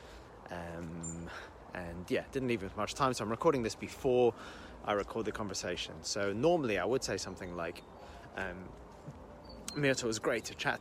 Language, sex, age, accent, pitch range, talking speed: English, male, 30-49, British, 85-115 Hz, 165 wpm